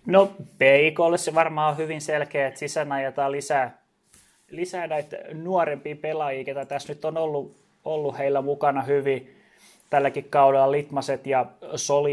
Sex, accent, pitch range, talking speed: male, native, 135-155 Hz, 145 wpm